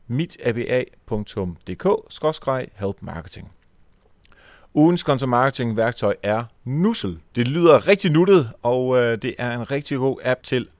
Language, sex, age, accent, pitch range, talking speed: Danish, male, 40-59, native, 105-140 Hz, 110 wpm